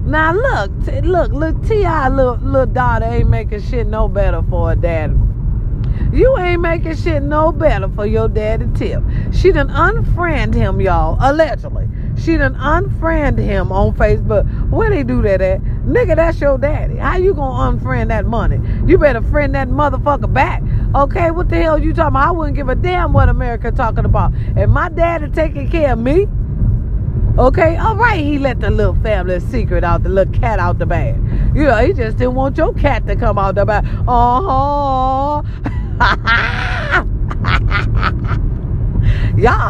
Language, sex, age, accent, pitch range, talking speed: English, female, 40-59, American, 105-125 Hz, 175 wpm